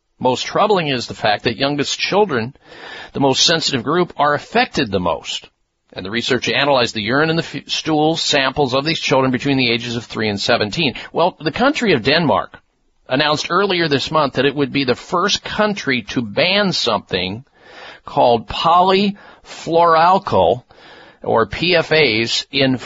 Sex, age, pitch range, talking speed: male, 50-69, 115-155 Hz, 160 wpm